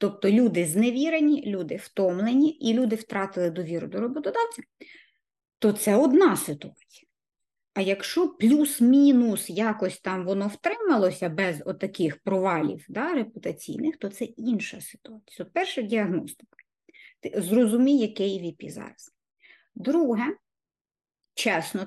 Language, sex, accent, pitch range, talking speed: Ukrainian, female, native, 195-275 Hz, 115 wpm